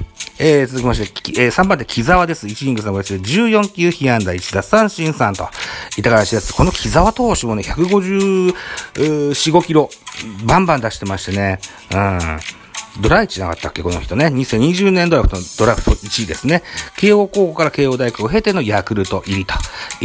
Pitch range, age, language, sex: 100-160 Hz, 40-59, Japanese, male